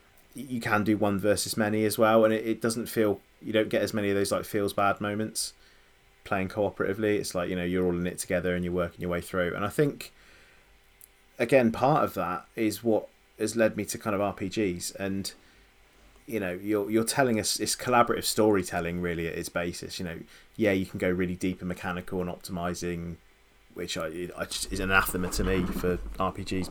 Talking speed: 210 wpm